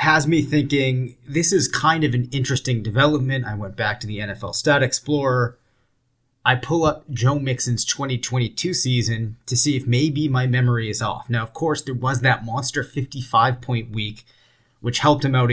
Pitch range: 120-135 Hz